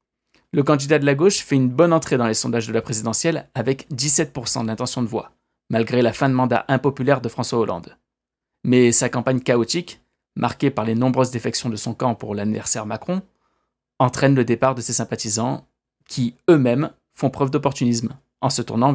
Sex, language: male, French